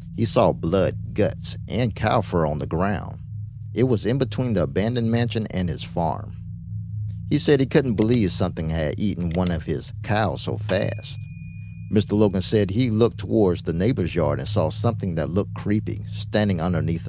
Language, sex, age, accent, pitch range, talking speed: English, male, 50-69, American, 90-115 Hz, 180 wpm